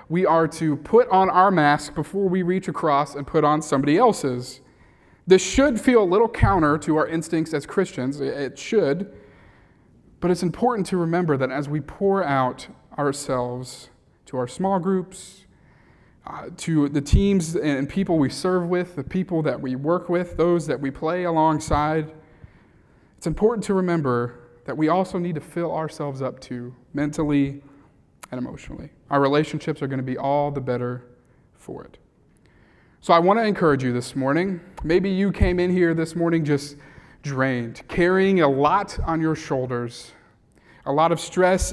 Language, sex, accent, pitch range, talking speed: English, male, American, 140-175 Hz, 170 wpm